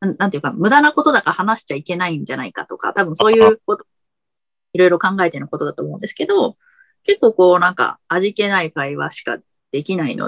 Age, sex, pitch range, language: 20-39, female, 180-295 Hz, Japanese